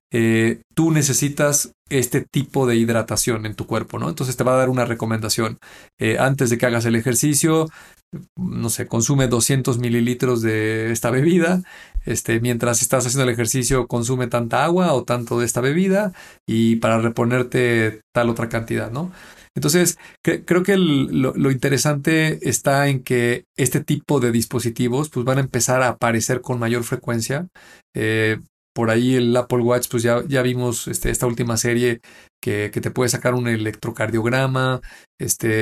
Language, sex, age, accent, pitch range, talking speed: Spanish, male, 40-59, Mexican, 115-130 Hz, 170 wpm